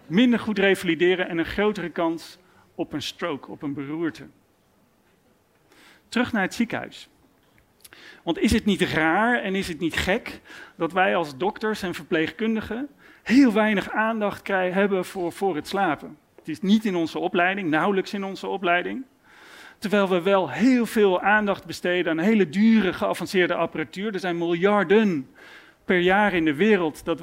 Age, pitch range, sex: 40-59, 170-215 Hz, male